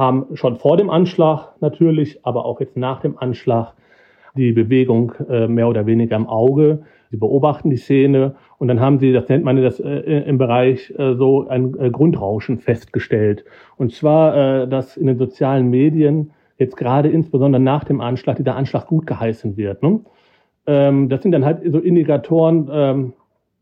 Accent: German